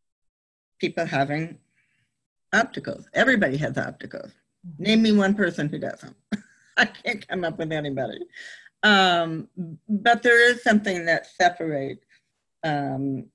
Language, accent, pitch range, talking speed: English, American, 140-180 Hz, 115 wpm